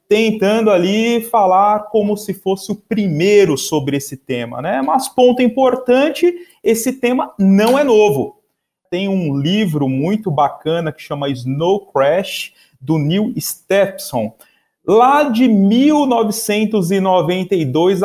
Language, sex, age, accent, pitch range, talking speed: Portuguese, male, 30-49, Brazilian, 140-210 Hz, 115 wpm